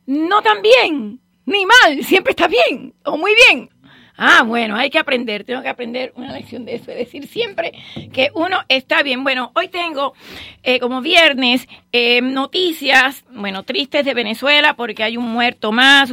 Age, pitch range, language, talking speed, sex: 40-59, 240-295 Hz, English, 175 wpm, female